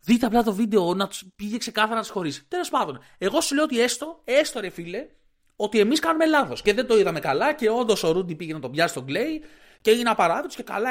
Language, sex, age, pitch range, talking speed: Greek, male, 30-49, 155-225 Hz, 250 wpm